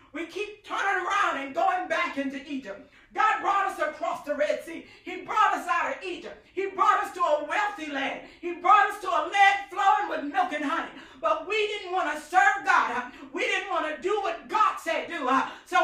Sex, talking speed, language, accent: female, 225 wpm, English, American